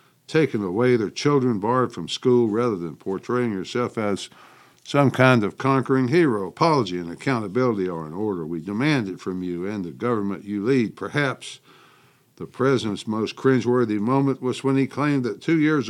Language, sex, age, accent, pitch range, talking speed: English, male, 60-79, American, 100-135 Hz, 175 wpm